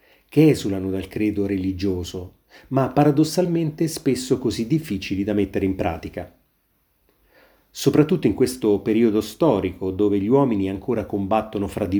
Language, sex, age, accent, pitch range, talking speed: Italian, male, 30-49, native, 95-125 Hz, 130 wpm